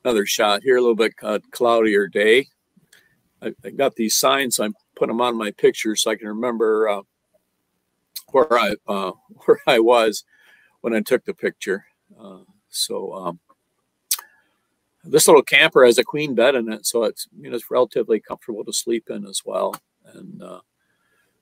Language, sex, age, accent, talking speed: English, male, 50-69, American, 170 wpm